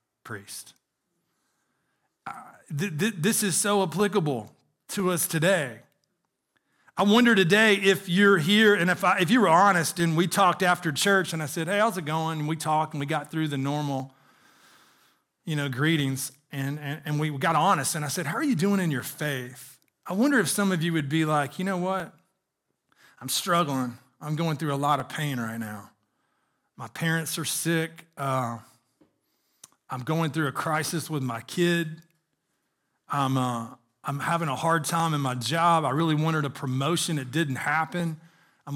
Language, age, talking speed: English, 40-59, 185 wpm